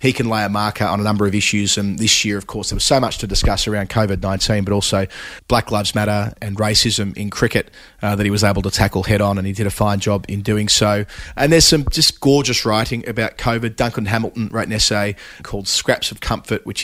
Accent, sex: Australian, male